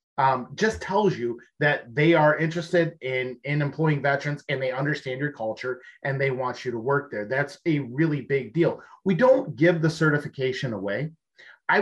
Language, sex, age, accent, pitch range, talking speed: English, male, 30-49, American, 130-160 Hz, 185 wpm